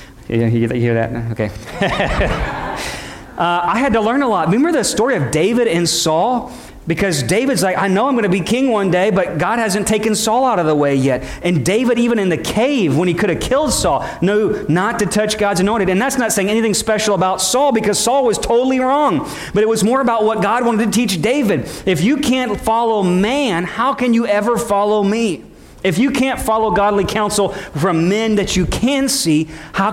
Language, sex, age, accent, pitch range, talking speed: English, male, 40-59, American, 145-210 Hz, 215 wpm